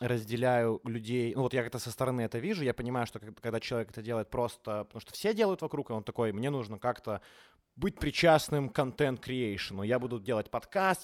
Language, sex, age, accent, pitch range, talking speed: Ukrainian, male, 20-39, native, 110-145 Hz, 200 wpm